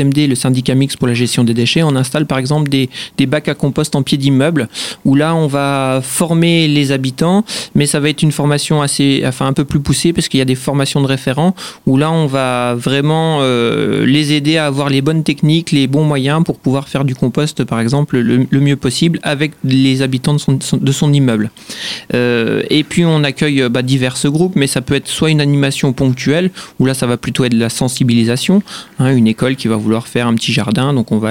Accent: French